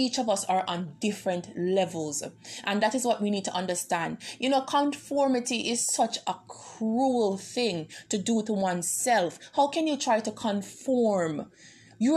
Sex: female